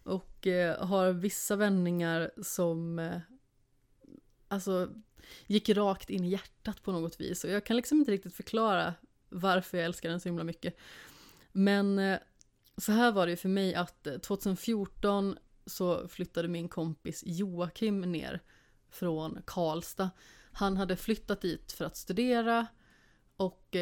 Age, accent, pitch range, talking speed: 30-49, native, 170-195 Hz, 135 wpm